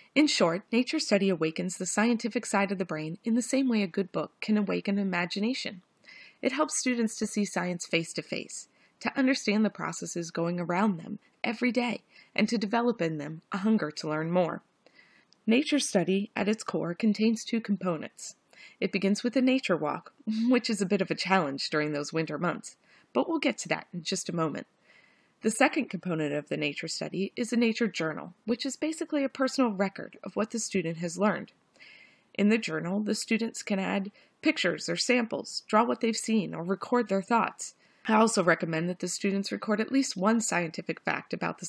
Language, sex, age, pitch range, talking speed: English, female, 30-49, 175-235 Hz, 195 wpm